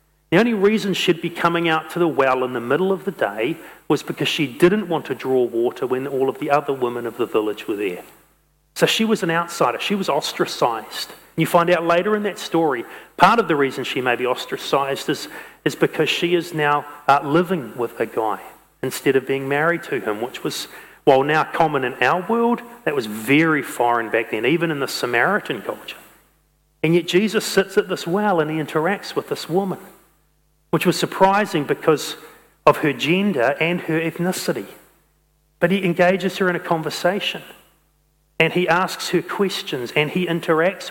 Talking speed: 195 wpm